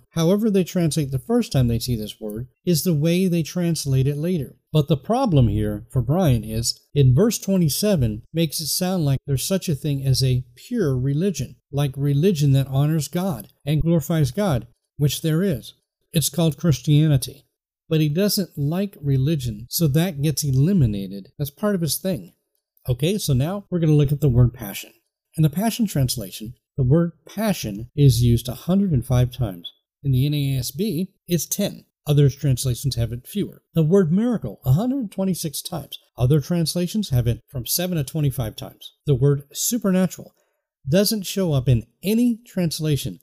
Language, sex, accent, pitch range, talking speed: English, male, American, 130-180 Hz, 170 wpm